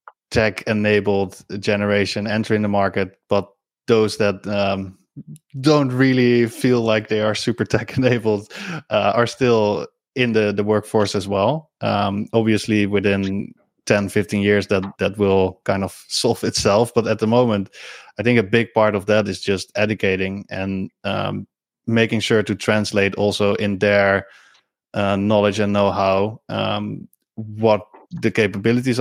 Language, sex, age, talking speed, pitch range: English, male, 20-39, 140 wpm, 100-115 Hz